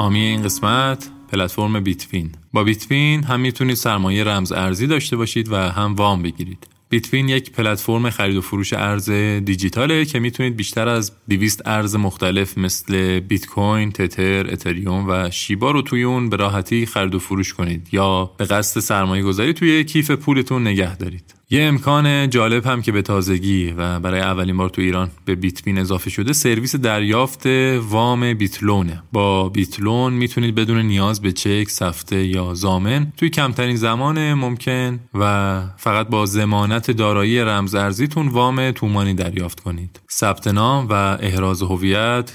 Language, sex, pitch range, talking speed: Persian, male, 95-120 Hz, 150 wpm